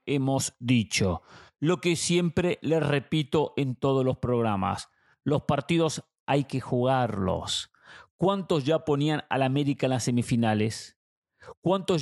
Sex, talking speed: male, 125 wpm